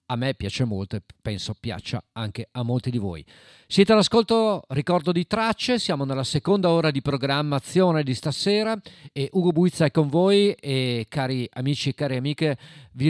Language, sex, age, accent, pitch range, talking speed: Italian, male, 40-59, native, 115-155 Hz, 175 wpm